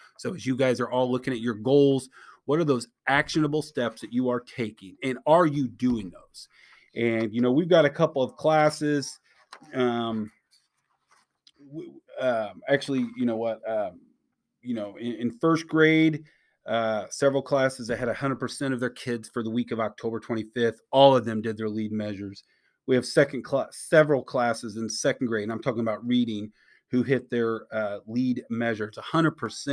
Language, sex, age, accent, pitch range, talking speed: English, male, 30-49, American, 115-140 Hz, 180 wpm